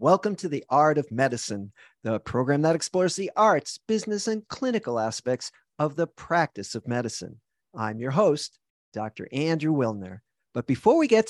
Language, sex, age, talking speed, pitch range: English, male, 50-69, 165 wpm, 120-185 Hz